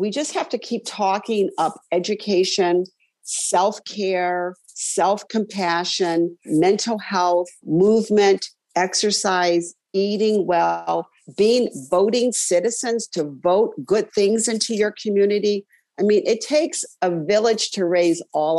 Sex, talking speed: female, 115 wpm